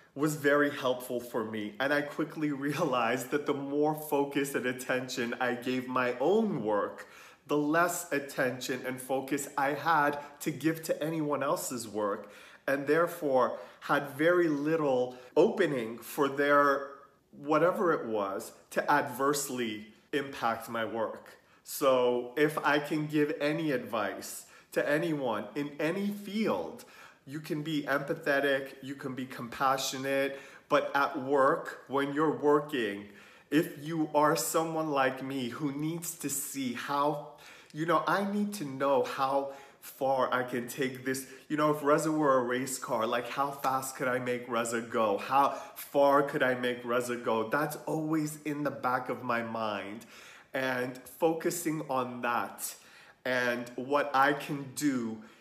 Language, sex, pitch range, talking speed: English, male, 125-150 Hz, 150 wpm